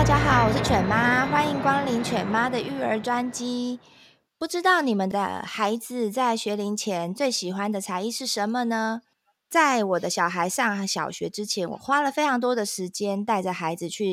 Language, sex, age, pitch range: Chinese, female, 20-39, 185-245 Hz